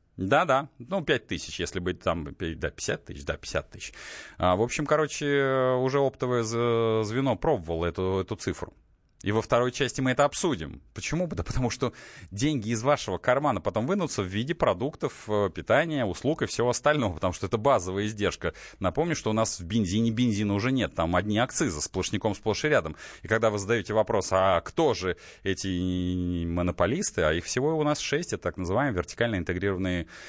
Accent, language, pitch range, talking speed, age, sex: native, Russian, 95-135 Hz, 185 wpm, 30-49, male